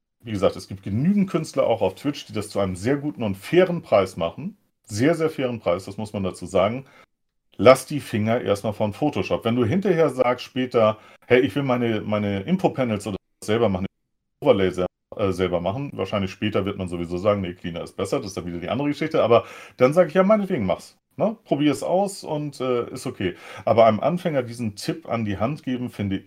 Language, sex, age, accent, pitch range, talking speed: German, male, 40-59, German, 100-160 Hz, 215 wpm